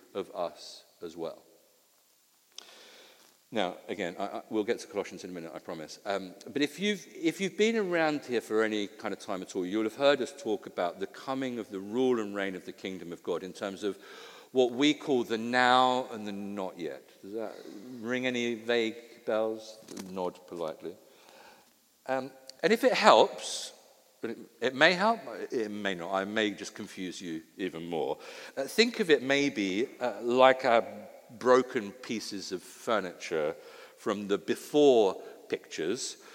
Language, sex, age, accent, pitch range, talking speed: English, male, 50-69, British, 105-155 Hz, 175 wpm